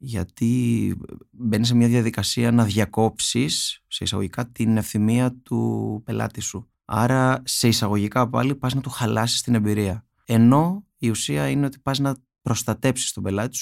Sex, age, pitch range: male, 20-39, 100-120 Hz